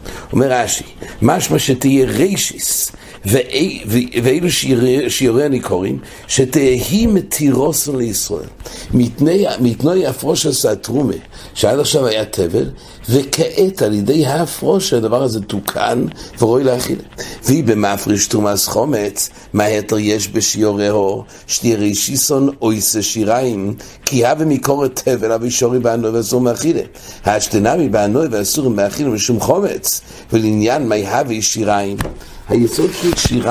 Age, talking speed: 60-79, 80 wpm